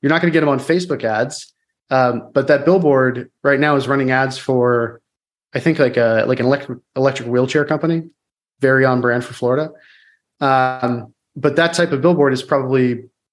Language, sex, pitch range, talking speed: English, male, 125-145 Hz, 185 wpm